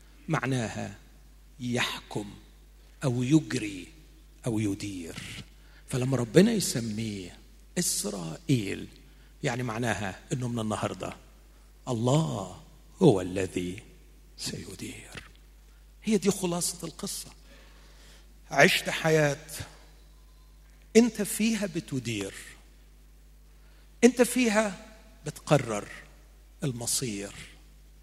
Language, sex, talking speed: Arabic, male, 70 wpm